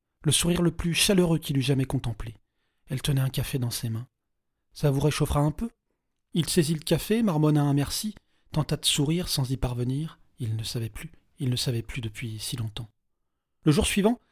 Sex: male